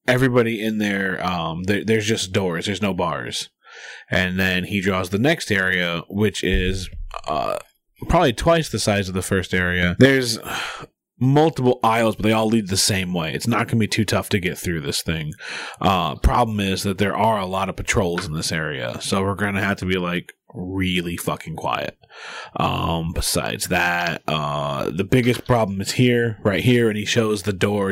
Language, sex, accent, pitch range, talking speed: English, male, American, 90-110 Hz, 190 wpm